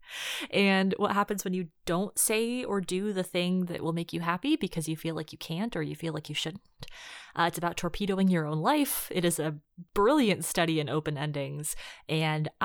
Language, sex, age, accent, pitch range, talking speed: English, female, 20-39, American, 155-220 Hz, 210 wpm